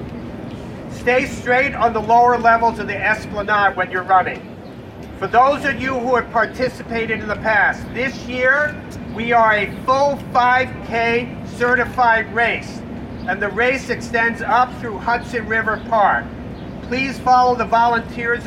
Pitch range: 220-245 Hz